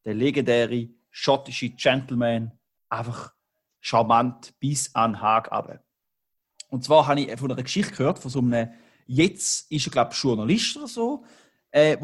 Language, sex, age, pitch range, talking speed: German, male, 30-49, 130-165 Hz, 150 wpm